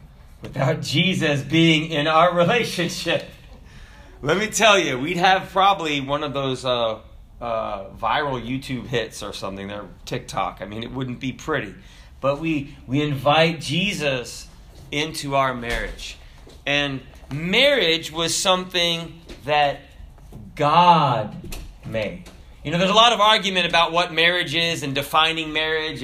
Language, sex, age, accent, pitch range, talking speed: English, male, 30-49, American, 130-185 Hz, 140 wpm